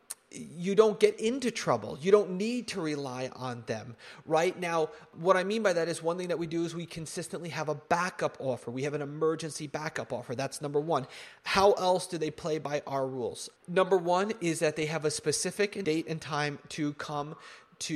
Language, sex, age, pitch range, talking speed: English, male, 30-49, 145-170 Hz, 210 wpm